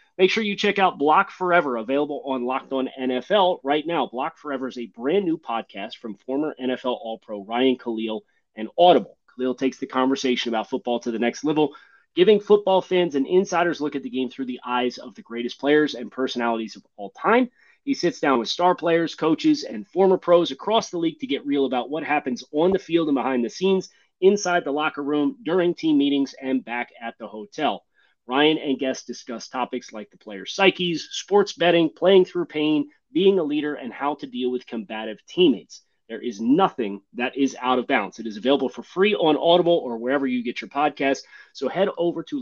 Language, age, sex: English, 30-49, male